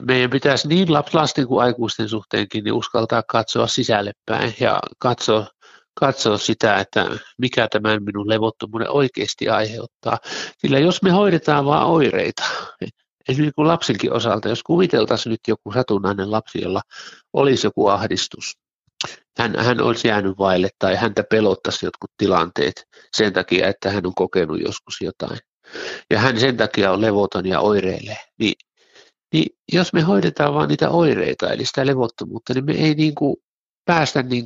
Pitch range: 110-145 Hz